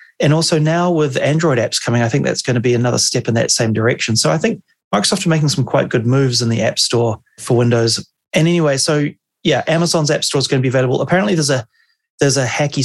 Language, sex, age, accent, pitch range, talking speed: English, male, 30-49, Australian, 120-150 Hz, 245 wpm